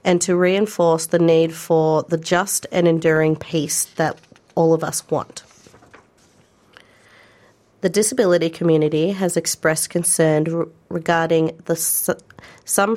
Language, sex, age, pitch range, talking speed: English, female, 40-59, 160-185 Hz, 110 wpm